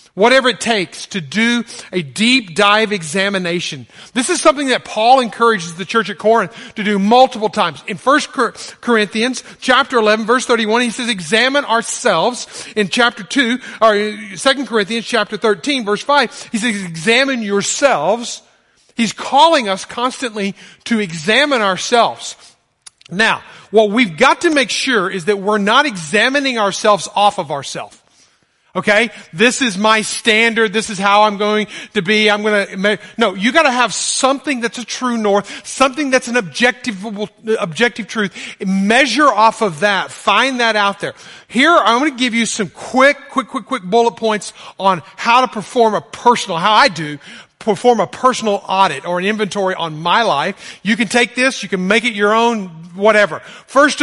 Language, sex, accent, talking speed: English, male, American, 170 wpm